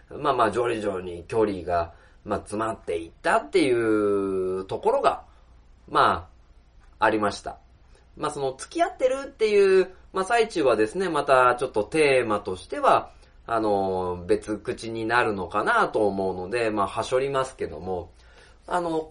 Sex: male